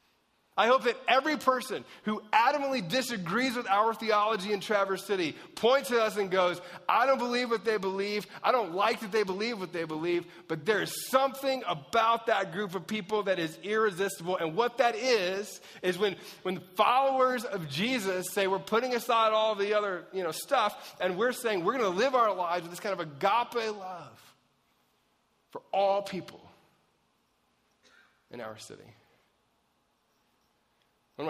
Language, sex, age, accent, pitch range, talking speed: English, male, 30-49, American, 130-215 Hz, 170 wpm